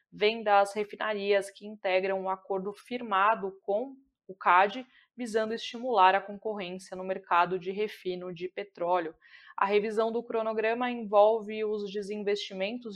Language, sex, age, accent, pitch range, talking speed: Portuguese, female, 20-39, Brazilian, 190-220 Hz, 130 wpm